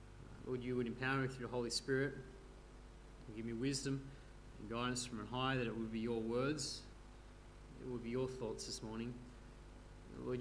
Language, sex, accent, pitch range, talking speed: English, male, Australian, 120-160 Hz, 185 wpm